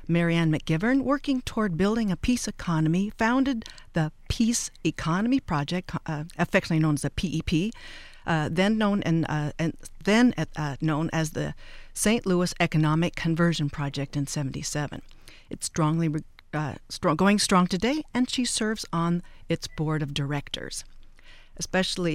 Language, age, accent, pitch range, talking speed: English, 50-69, American, 155-195 Hz, 145 wpm